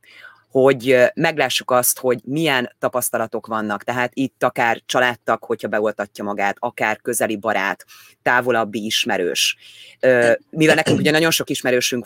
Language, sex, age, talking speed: Hungarian, female, 30-49, 125 wpm